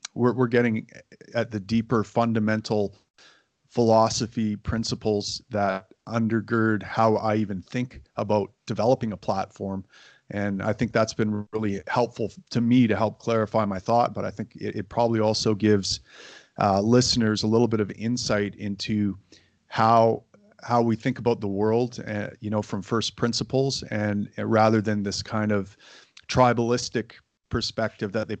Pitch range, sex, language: 105-115 Hz, male, English